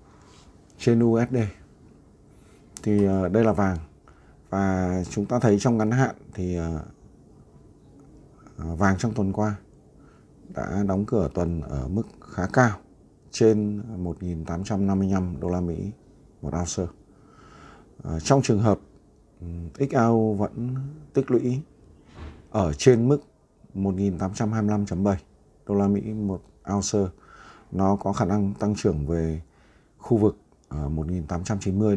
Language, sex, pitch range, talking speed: Vietnamese, male, 85-105 Hz, 110 wpm